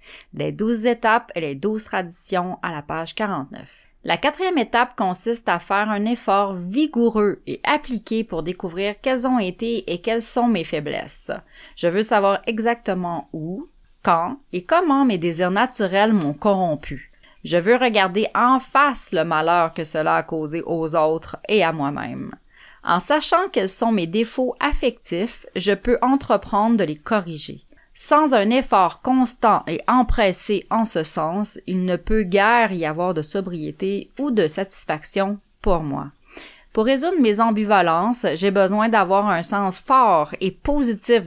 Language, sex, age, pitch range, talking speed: French, female, 30-49, 175-230 Hz, 155 wpm